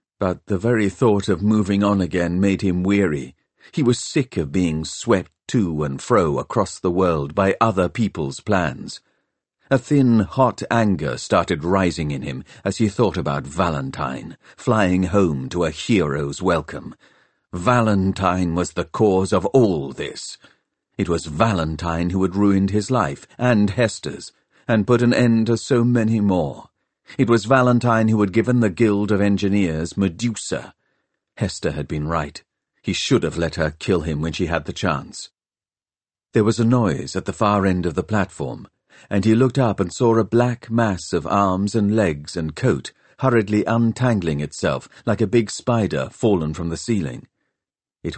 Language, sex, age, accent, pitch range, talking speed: English, male, 50-69, British, 85-115 Hz, 170 wpm